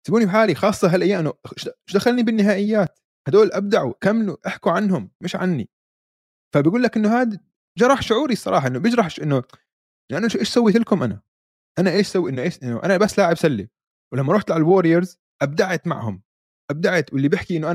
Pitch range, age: 150-215 Hz, 20-39